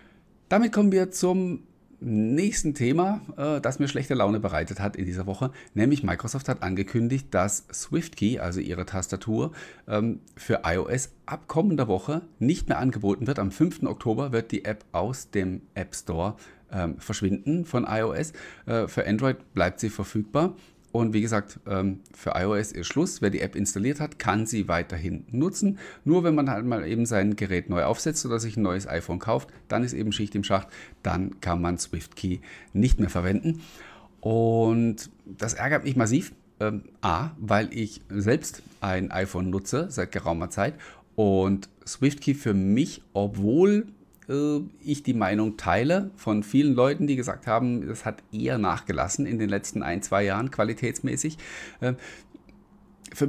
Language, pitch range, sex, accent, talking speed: German, 100-145 Hz, male, German, 155 wpm